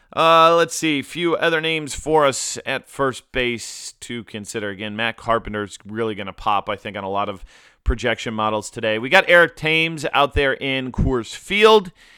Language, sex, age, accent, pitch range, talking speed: English, male, 30-49, American, 105-140 Hz, 190 wpm